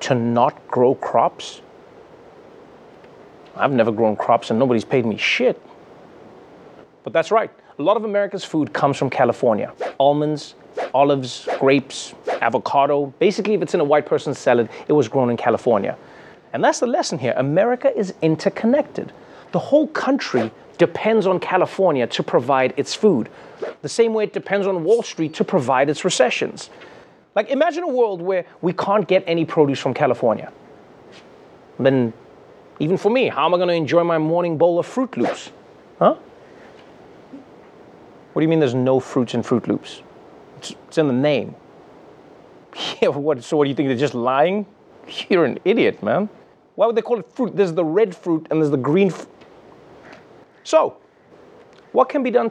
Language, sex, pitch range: English, male, 145-215 Hz